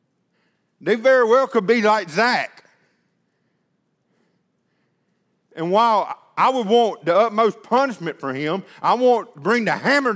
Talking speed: 135 wpm